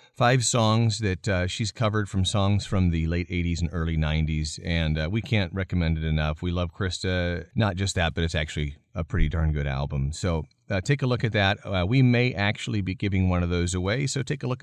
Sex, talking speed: male, 235 wpm